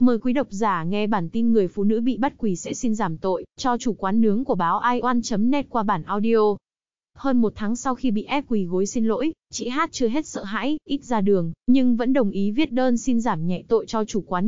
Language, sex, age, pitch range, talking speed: Vietnamese, female, 20-39, 205-245 Hz, 250 wpm